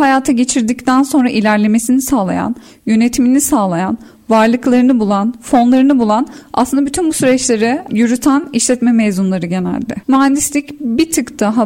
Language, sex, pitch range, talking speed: Turkish, female, 225-275 Hz, 120 wpm